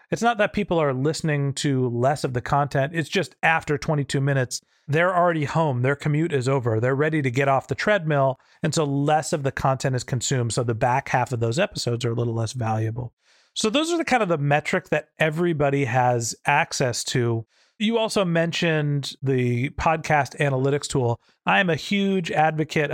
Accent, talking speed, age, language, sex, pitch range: American, 195 wpm, 40-59, English, male, 130-160 Hz